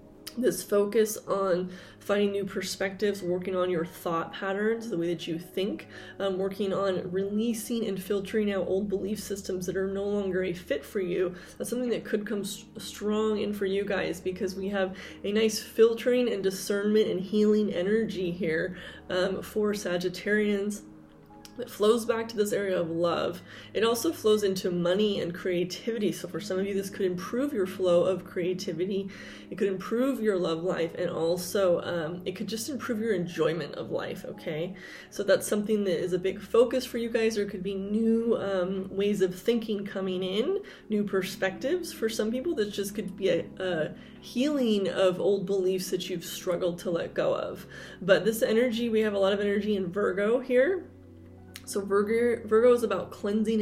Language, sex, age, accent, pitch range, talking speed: English, female, 20-39, American, 185-215 Hz, 185 wpm